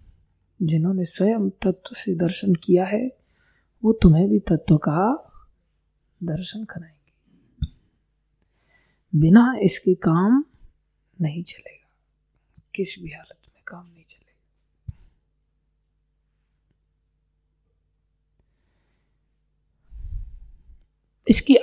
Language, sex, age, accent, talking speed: Hindi, female, 20-39, native, 75 wpm